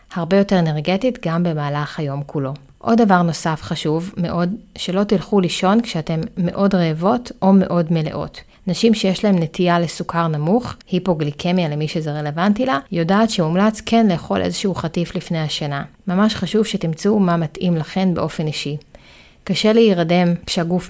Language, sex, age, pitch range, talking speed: Hebrew, female, 30-49, 160-195 Hz, 145 wpm